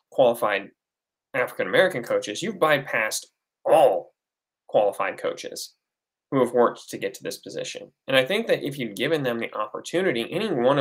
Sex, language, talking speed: male, English, 160 wpm